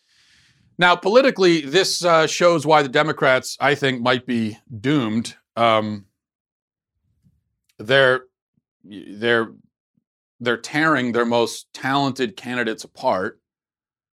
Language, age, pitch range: English, 40-59, 110-140 Hz